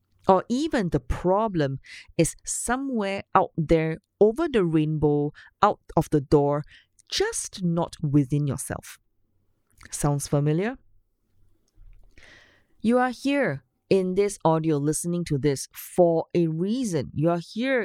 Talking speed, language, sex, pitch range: 120 wpm, English, female, 140-195 Hz